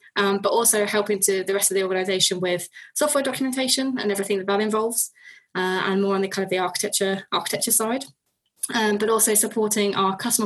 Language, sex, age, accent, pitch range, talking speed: English, female, 20-39, British, 190-210 Hz, 200 wpm